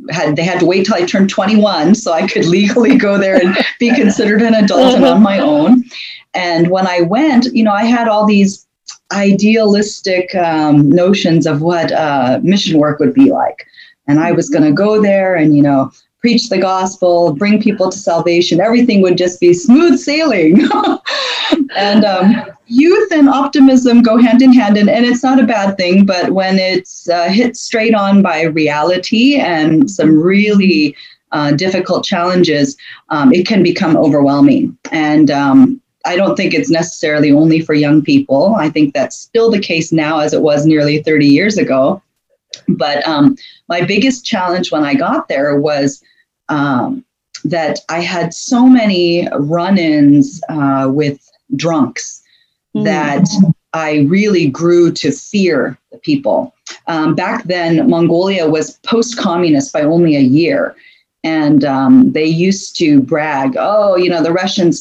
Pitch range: 165-240 Hz